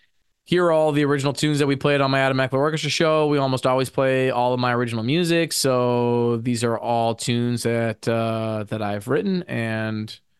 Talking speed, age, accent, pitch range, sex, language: 195 wpm, 20-39, American, 115-135 Hz, male, English